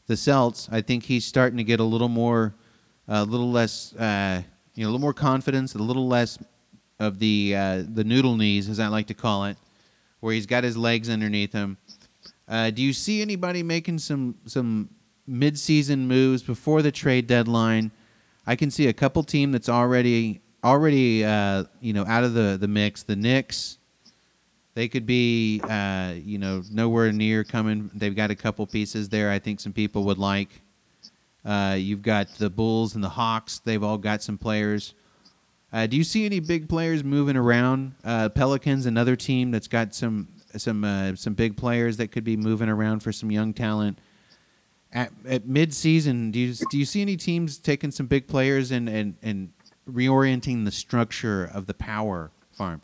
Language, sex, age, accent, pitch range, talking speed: English, male, 30-49, American, 105-130 Hz, 185 wpm